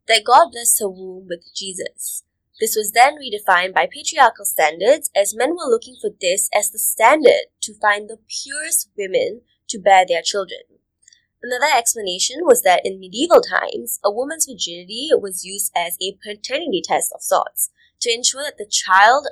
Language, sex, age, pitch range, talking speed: English, female, 20-39, 190-275 Hz, 170 wpm